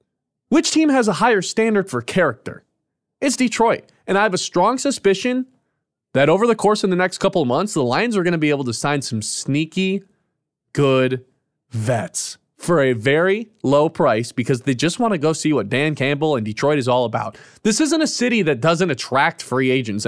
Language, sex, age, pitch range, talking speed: English, male, 20-39, 130-195 Hz, 205 wpm